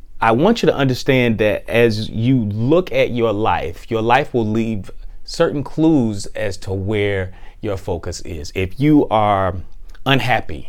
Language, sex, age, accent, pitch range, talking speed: English, male, 30-49, American, 95-120 Hz, 155 wpm